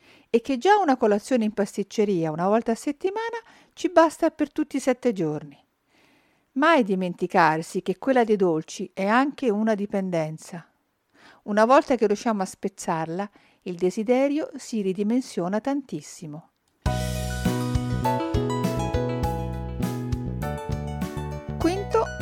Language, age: Italian, 50-69